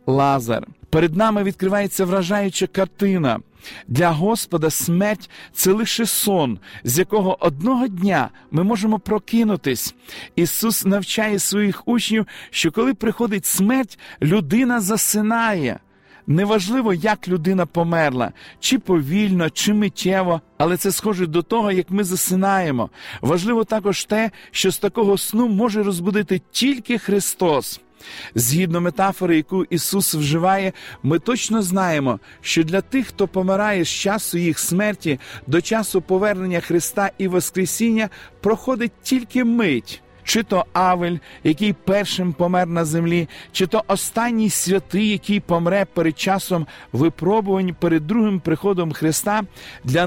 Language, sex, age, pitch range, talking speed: Ukrainian, male, 40-59, 170-215 Hz, 125 wpm